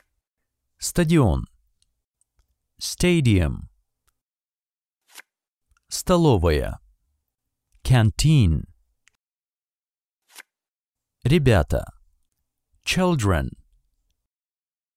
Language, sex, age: Russian, male, 50-69